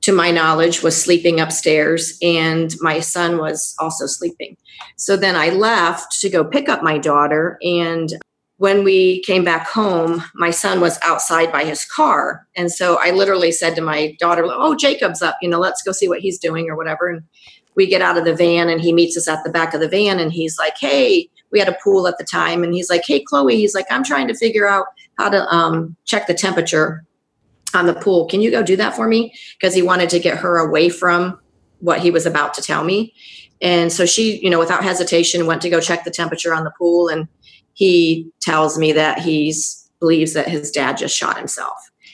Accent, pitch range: American, 165-185 Hz